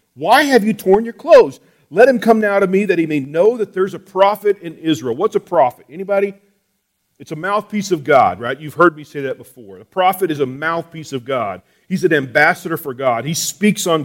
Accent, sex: American, male